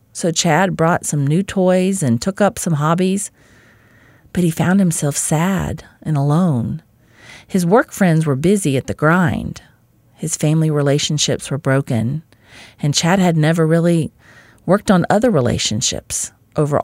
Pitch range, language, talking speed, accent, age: 125-180 Hz, English, 145 wpm, American, 40-59